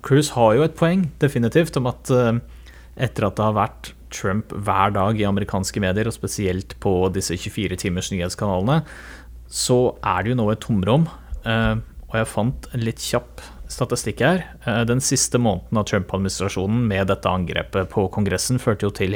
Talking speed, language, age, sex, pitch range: 170 wpm, English, 30-49, male, 90-110 Hz